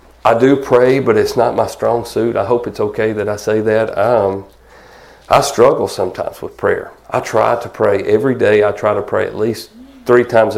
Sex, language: male, English